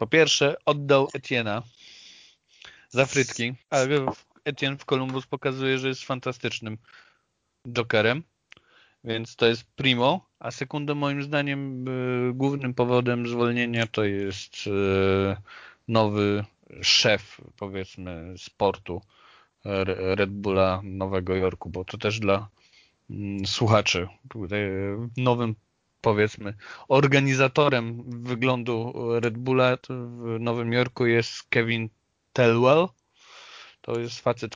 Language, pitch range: Polish, 105-125 Hz